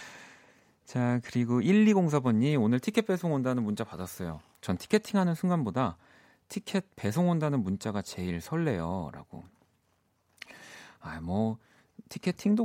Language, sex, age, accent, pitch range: Korean, male, 40-59, native, 100-145 Hz